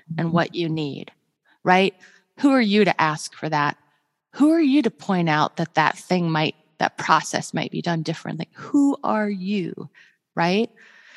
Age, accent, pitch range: 30-49, American, 165-230 Hz